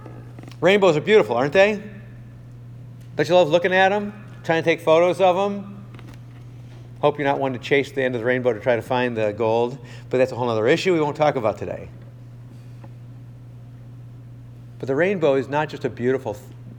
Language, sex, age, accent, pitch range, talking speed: English, male, 50-69, American, 120-145 Hz, 190 wpm